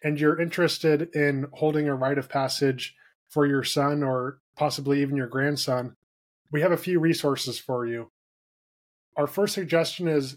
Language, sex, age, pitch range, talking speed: English, male, 10-29, 140-160 Hz, 160 wpm